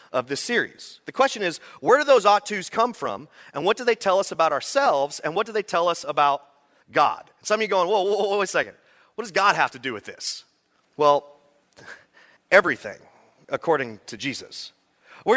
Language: English